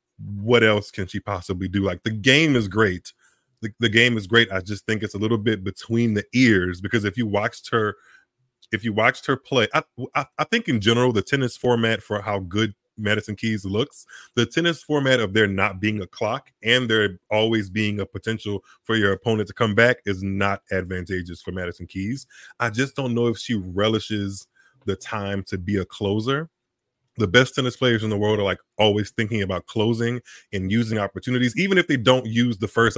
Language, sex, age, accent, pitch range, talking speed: English, male, 20-39, American, 100-120 Hz, 205 wpm